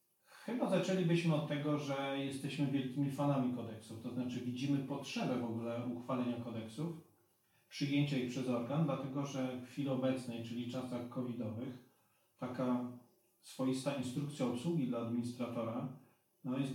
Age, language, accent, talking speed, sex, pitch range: 40-59, Polish, native, 135 wpm, male, 125-150 Hz